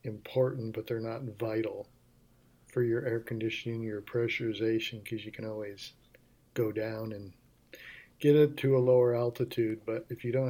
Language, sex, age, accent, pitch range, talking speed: English, male, 50-69, American, 115-130 Hz, 160 wpm